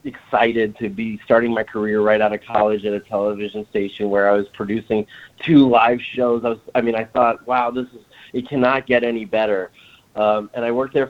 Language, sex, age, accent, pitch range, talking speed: English, male, 30-49, American, 105-125 Hz, 215 wpm